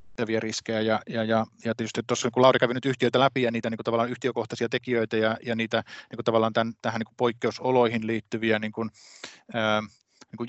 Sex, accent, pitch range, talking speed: male, native, 110-125 Hz, 195 wpm